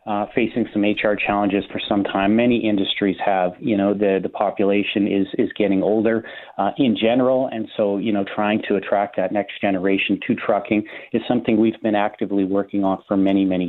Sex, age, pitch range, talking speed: male, 30-49, 100-110 Hz, 195 wpm